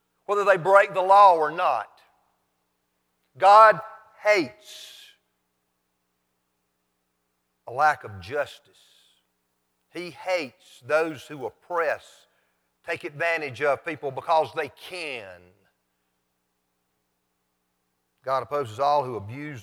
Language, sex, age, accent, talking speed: English, male, 50-69, American, 90 wpm